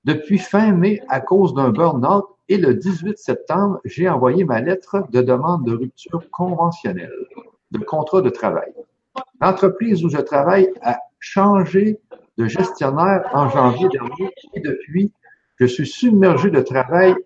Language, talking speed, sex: French, 145 wpm, male